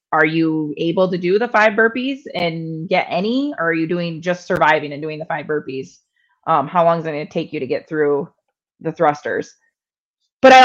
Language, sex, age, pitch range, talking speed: English, female, 20-39, 160-210 Hz, 210 wpm